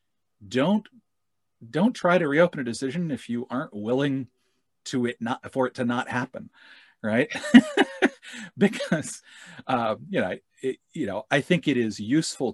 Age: 40-59